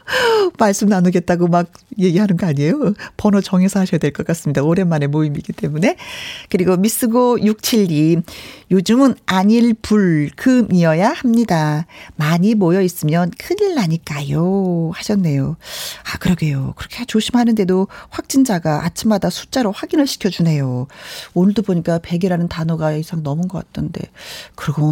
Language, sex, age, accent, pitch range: Korean, female, 40-59, native, 170-255 Hz